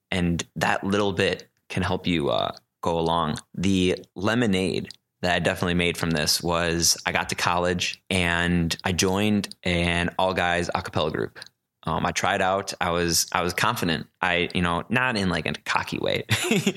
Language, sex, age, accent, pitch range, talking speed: English, male, 20-39, American, 85-95 Hz, 175 wpm